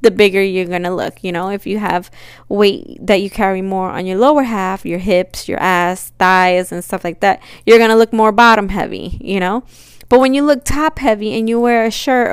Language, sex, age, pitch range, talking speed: English, female, 10-29, 175-200 Hz, 230 wpm